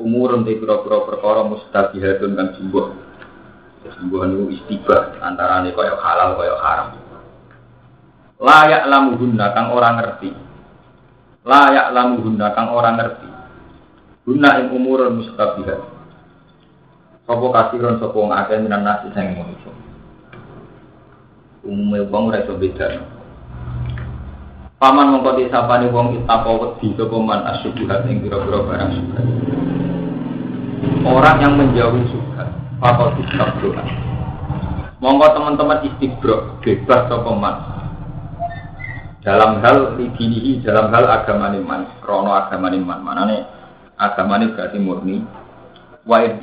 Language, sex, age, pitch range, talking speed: Malay, male, 40-59, 100-125 Hz, 105 wpm